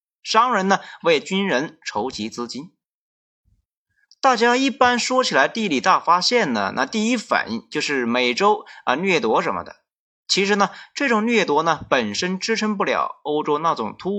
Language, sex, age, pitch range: Chinese, male, 30-49, 180-255 Hz